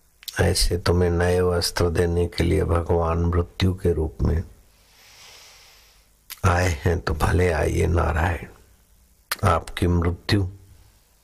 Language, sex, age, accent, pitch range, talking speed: Hindi, male, 60-79, native, 85-100 Hz, 105 wpm